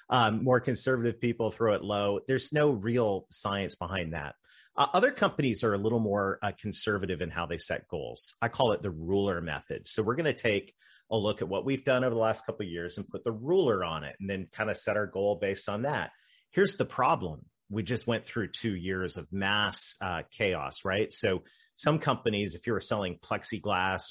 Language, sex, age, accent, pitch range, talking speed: English, male, 30-49, American, 90-115 Hz, 215 wpm